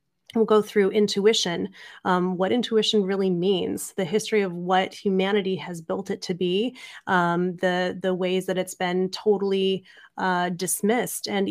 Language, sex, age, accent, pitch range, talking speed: English, female, 30-49, American, 185-205 Hz, 155 wpm